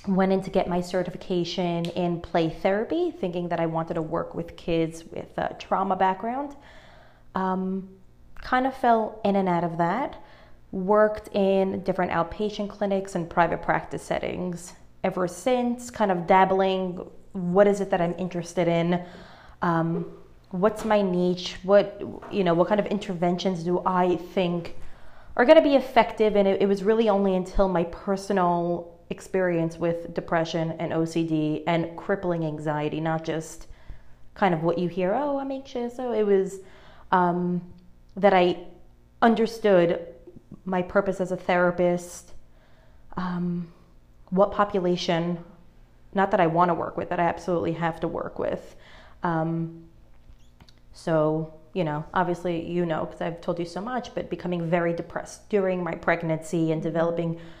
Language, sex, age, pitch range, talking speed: English, female, 20-39, 165-195 Hz, 155 wpm